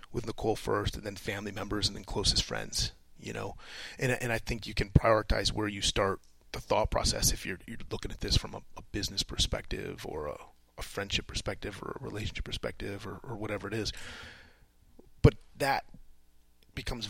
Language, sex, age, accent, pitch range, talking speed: English, male, 30-49, American, 95-115 Hz, 190 wpm